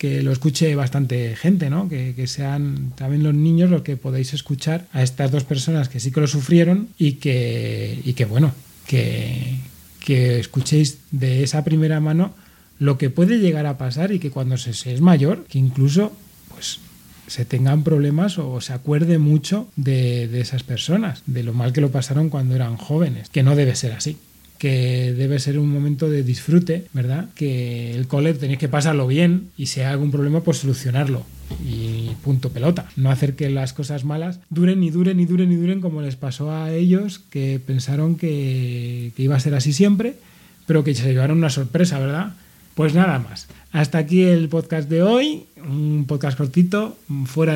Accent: Spanish